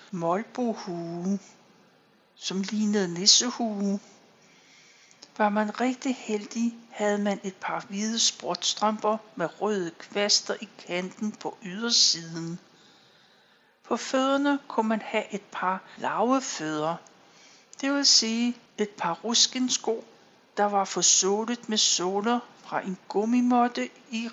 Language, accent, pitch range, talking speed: Danish, native, 195-240 Hz, 110 wpm